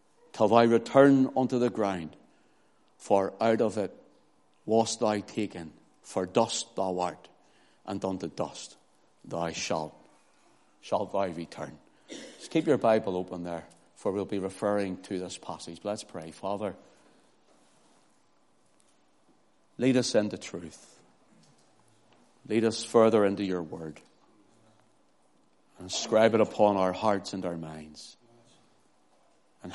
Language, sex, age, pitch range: English, male, 60-79, 95-120 Hz